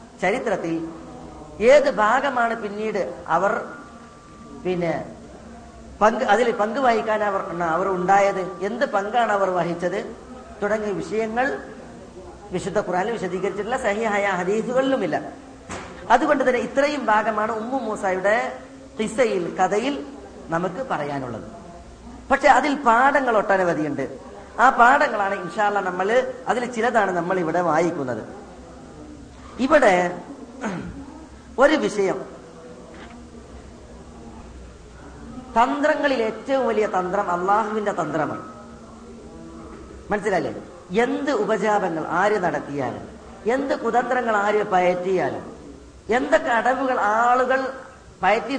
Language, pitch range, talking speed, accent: Malayalam, 185-245 Hz, 90 wpm, native